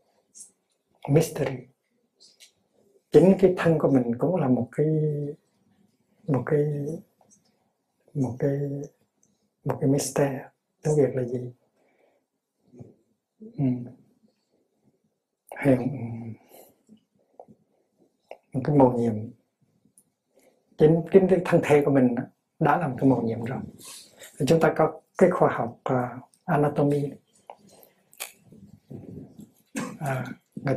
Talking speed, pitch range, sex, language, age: 100 wpm, 125-160 Hz, male, Vietnamese, 60-79